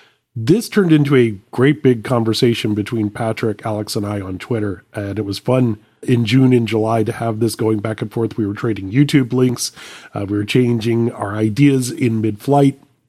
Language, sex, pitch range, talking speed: English, male, 110-130 Hz, 195 wpm